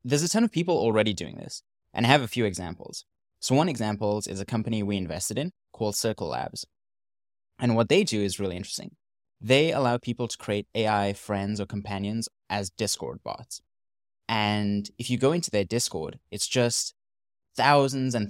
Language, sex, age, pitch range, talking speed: English, male, 20-39, 100-120 Hz, 185 wpm